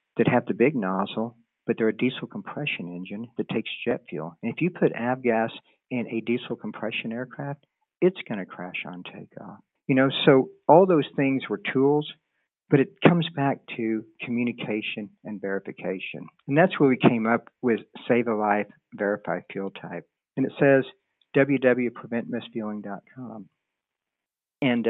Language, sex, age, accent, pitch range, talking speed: English, male, 50-69, American, 110-130 Hz, 155 wpm